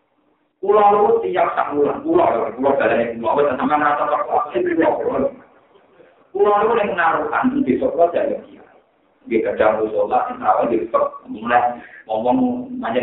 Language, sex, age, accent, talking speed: Indonesian, male, 50-69, native, 110 wpm